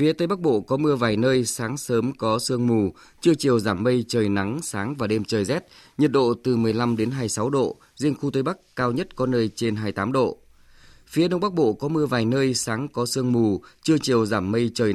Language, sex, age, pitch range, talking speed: Vietnamese, male, 20-39, 110-135 Hz, 235 wpm